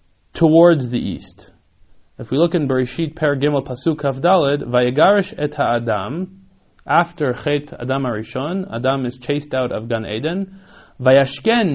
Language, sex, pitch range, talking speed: English, male, 120-170 Hz, 140 wpm